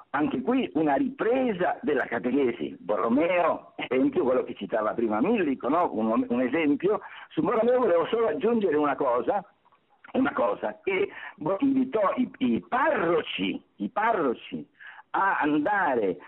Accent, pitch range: native, 205-290 Hz